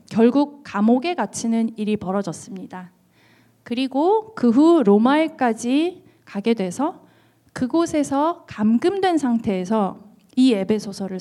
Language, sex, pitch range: Korean, female, 200-270 Hz